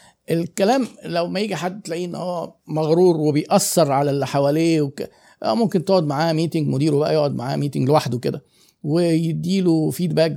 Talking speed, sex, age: 150 wpm, male, 50-69